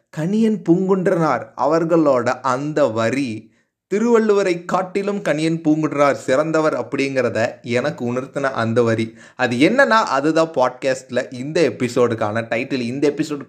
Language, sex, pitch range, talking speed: Tamil, male, 115-160 Hz, 105 wpm